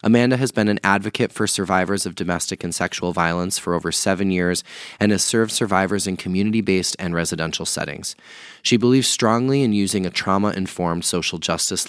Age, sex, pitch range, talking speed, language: 20-39, male, 90-105 Hz, 170 wpm, English